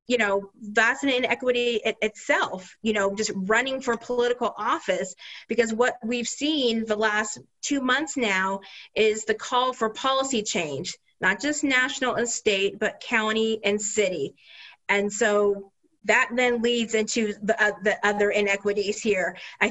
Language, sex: English, female